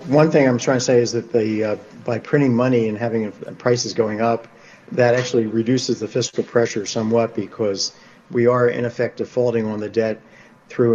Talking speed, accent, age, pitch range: 195 wpm, American, 50-69, 110-125 Hz